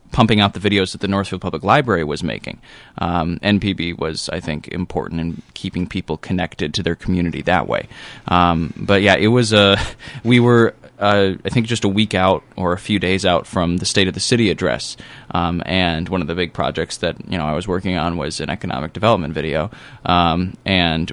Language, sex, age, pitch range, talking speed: English, male, 20-39, 90-105 Hz, 210 wpm